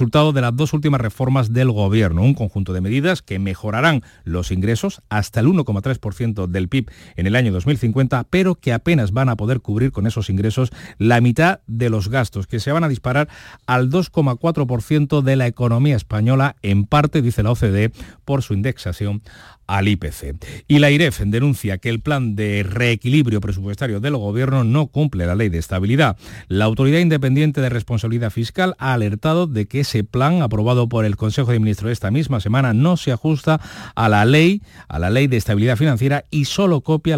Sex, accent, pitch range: male, Spanish, 105-140 Hz